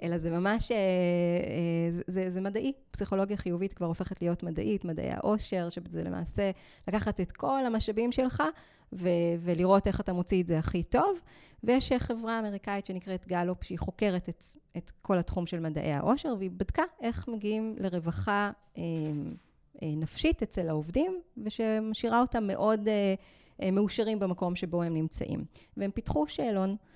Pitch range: 175-225 Hz